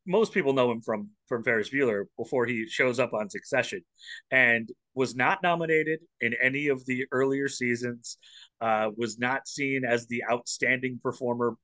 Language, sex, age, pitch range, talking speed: English, male, 30-49, 110-135 Hz, 165 wpm